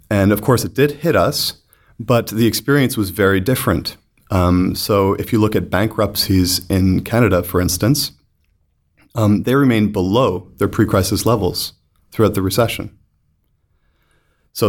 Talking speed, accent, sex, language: 145 wpm, American, male, English